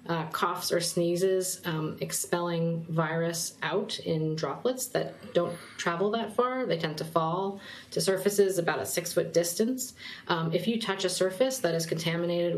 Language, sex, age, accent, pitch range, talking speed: English, female, 30-49, American, 155-185 Hz, 165 wpm